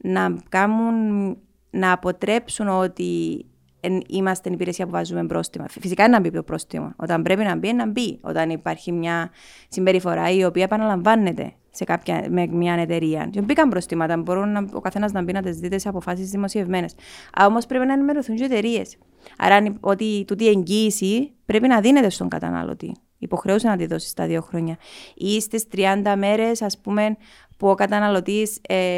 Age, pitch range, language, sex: 20-39, 180-220 Hz, Greek, female